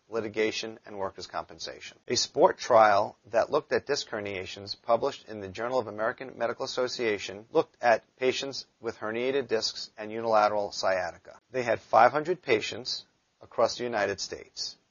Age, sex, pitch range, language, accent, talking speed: 40-59, male, 105-135 Hz, English, American, 150 wpm